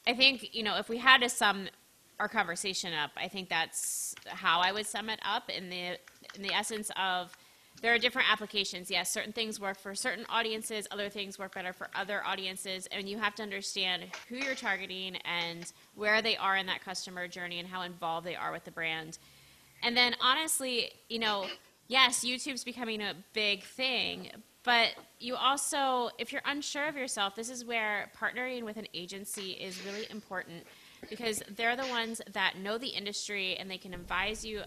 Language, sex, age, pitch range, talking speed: English, female, 20-39, 180-225 Hz, 190 wpm